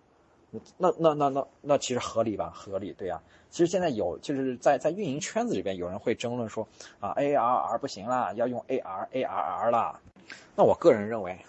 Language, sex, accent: Chinese, male, native